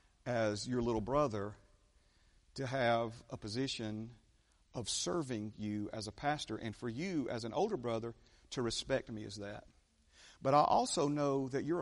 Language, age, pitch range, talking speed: English, 40-59, 105-150 Hz, 160 wpm